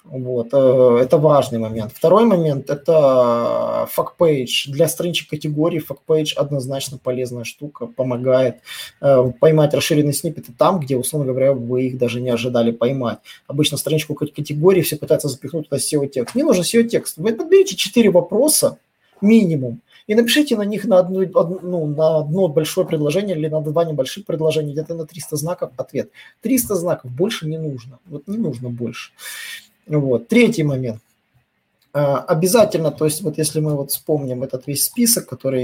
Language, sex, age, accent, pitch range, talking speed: Russian, male, 20-39, native, 135-185 Hz, 155 wpm